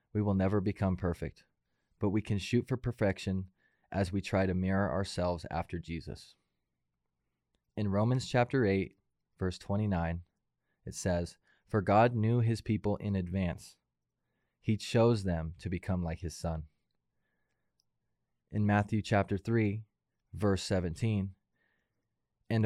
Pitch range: 90-110 Hz